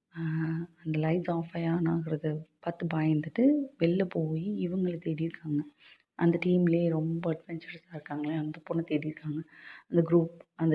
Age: 30-49